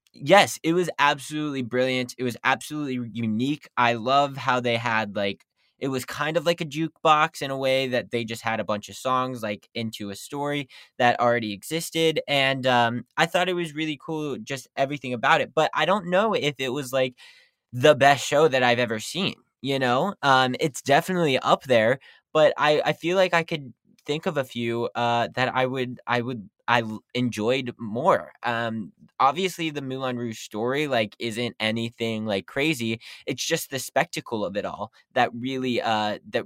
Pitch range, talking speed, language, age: 120-150 Hz, 190 wpm, English, 20-39